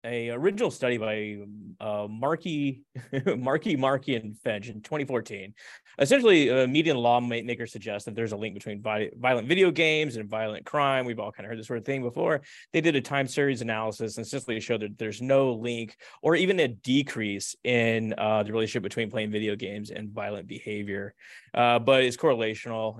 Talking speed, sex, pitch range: 190 wpm, male, 110-140 Hz